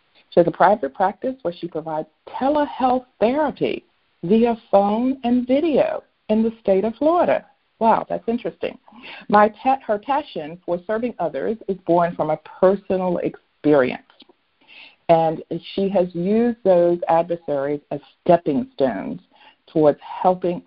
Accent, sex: American, female